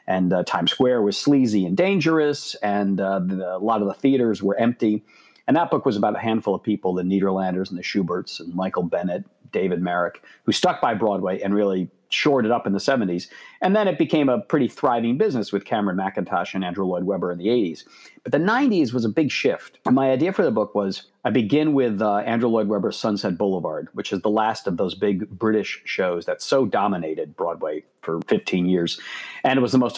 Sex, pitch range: male, 95-120 Hz